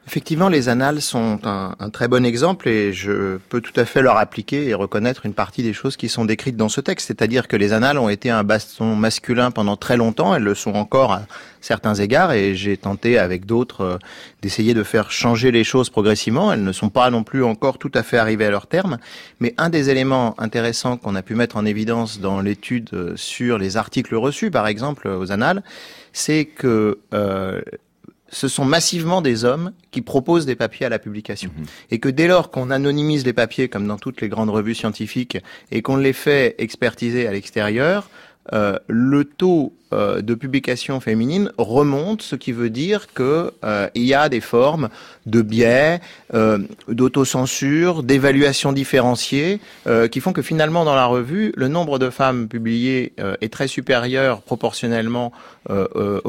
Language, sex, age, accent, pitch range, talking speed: French, male, 30-49, French, 110-140 Hz, 190 wpm